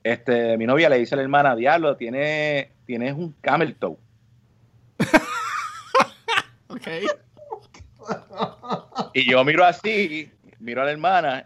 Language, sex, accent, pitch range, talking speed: Spanish, male, Venezuelan, 130-200 Hz, 120 wpm